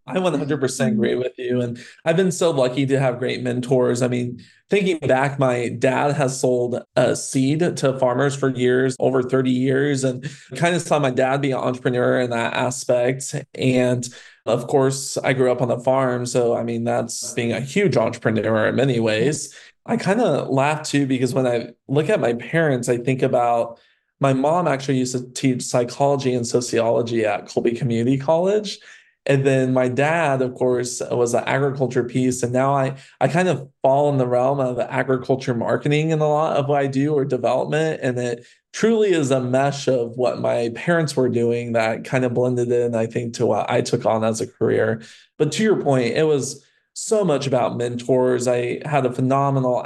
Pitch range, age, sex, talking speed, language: 120-140 Hz, 20-39, male, 200 wpm, English